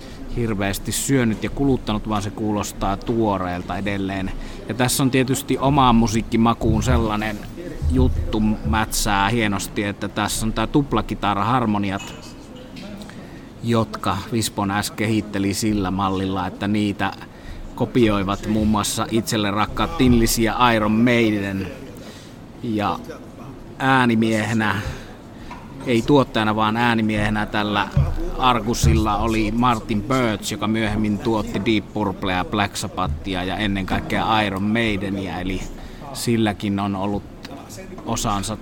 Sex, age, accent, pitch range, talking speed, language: male, 30-49, native, 100-115 Hz, 105 wpm, Finnish